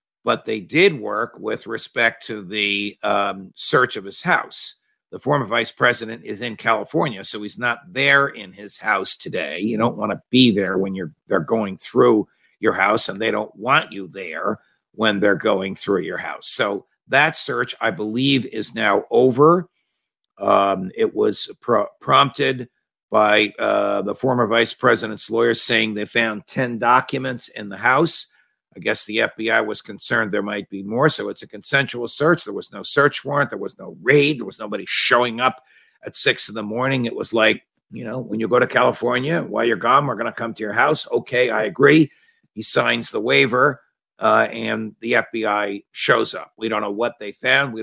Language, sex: English, male